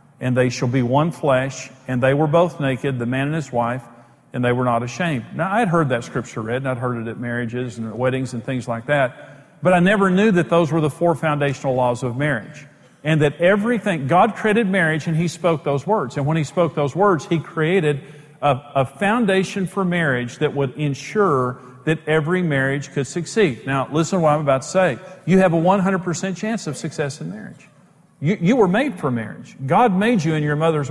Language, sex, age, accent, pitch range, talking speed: English, male, 50-69, American, 135-185 Hz, 225 wpm